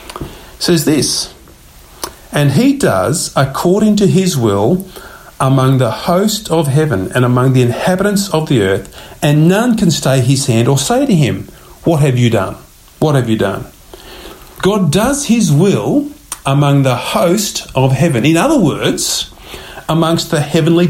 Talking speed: 155 wpm